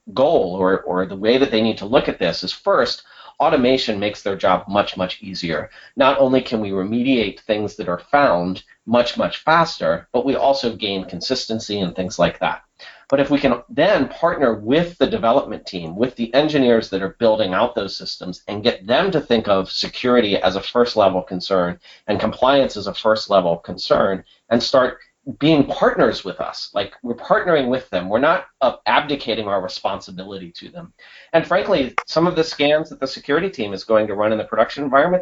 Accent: American